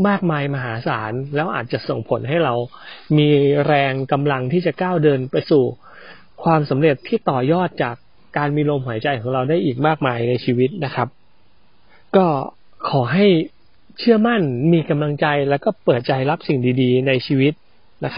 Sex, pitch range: male, 135-175 Hz